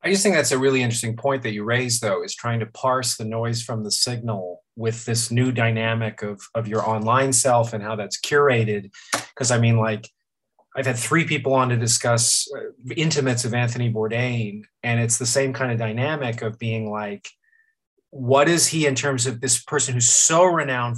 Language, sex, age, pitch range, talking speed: English, male, 30-49, 115-145 Hz, 200 wpm